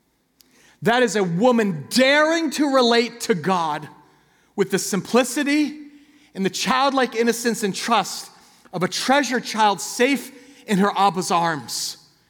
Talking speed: 130 wpm